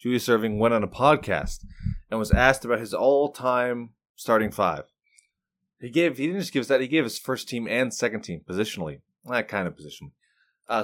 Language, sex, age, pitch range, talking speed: English, male, 20-39, 100-125 Hz, 195 wpm